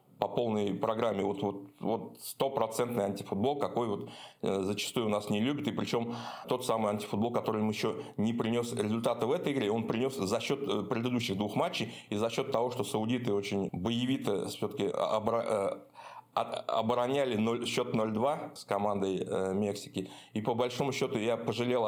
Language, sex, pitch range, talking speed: Russian, male, 100-120 Hz, 165 wpm